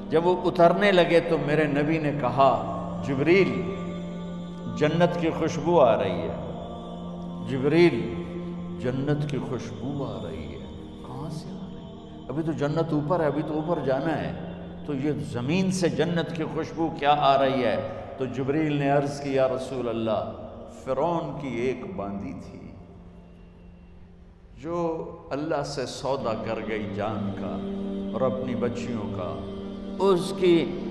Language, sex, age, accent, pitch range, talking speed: English, male, 60-79, Indian, 115-170 Hz, 130 wpm